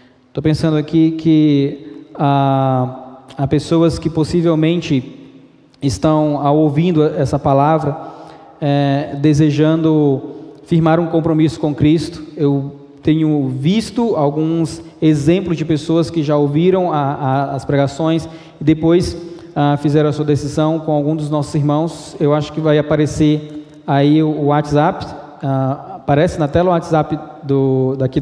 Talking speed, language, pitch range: 135 wpm, Portuguese, 140-160 Hz